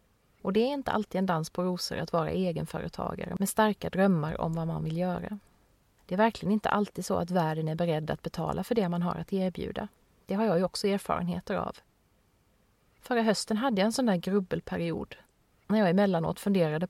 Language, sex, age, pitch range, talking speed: Swedish, female, 30-49, 175-215 Hz, 200 wpm